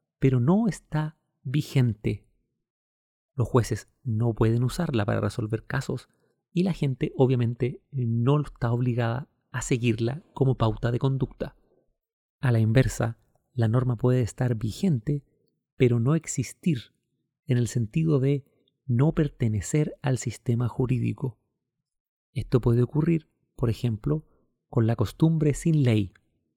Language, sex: Spanish, male